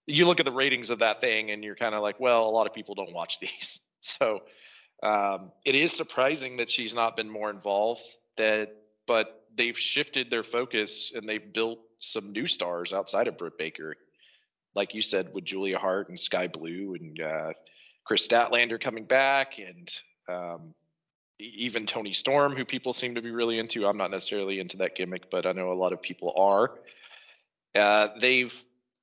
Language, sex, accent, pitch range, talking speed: English, male, American, 105-130 Hz, 190 wpm